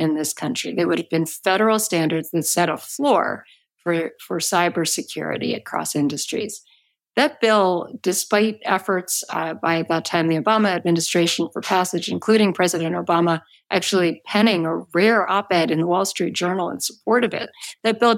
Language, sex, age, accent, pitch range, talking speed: English, female, 50-69, American, 165-200 Hz, 165 wpm